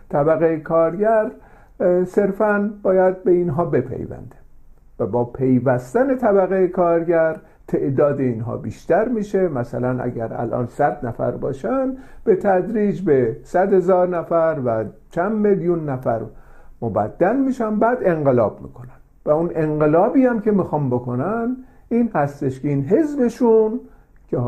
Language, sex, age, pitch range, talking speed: Persian, male, 50-69, 135-210 Hz, 125 wpm